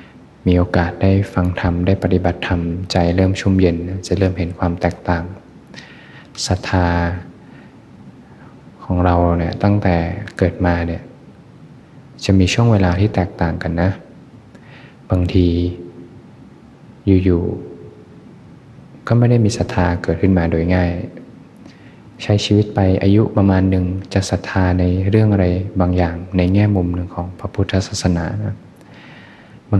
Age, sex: 20-39, male